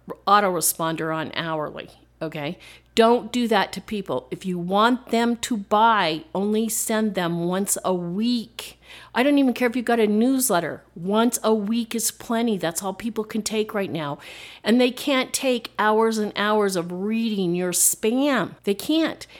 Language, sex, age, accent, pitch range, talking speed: English, female, 50-69, American, 180-230 Hz, 170 wpm